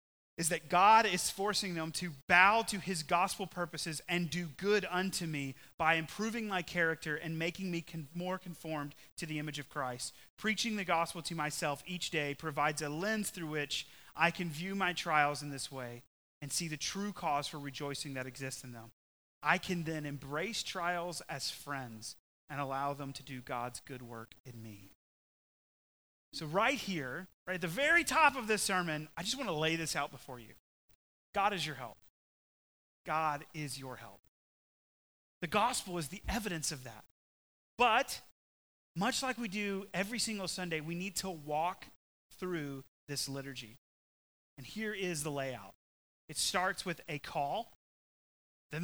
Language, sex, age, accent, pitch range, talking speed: English, male, 30-49, American, 135-180 Hz, 170 wpm